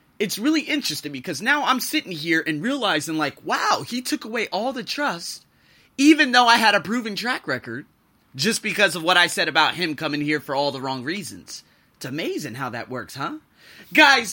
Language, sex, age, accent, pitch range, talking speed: English, male, 30-49, American, 150-235 Hz, 200 wpm